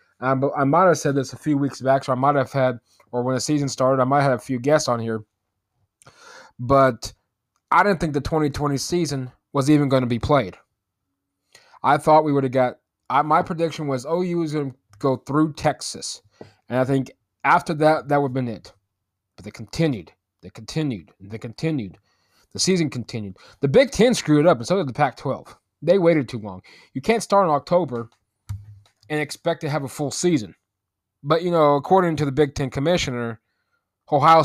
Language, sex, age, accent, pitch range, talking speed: English, male, 20-39, American, 120-155 Hz, 200 wpm